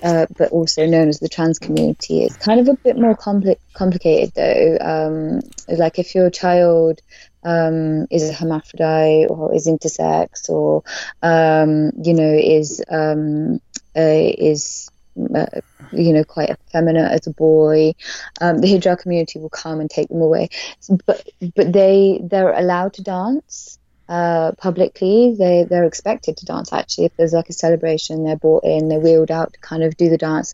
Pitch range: 160-185 Hz